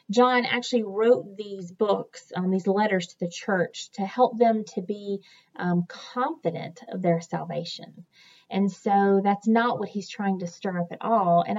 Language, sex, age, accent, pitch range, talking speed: English, female, 30-49, American, 175-220 Hz, 175 wpm